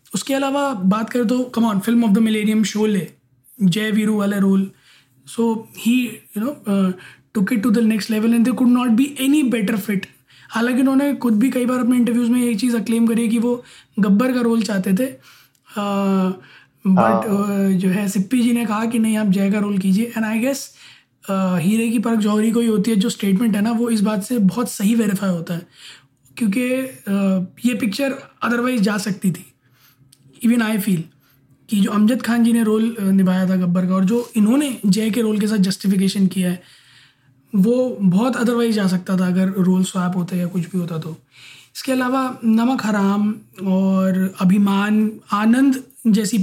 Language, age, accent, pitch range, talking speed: Hindi, 20-39, native, 190-235 Hz, 195 wpm